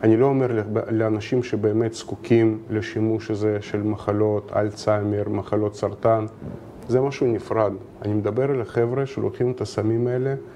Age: 30-49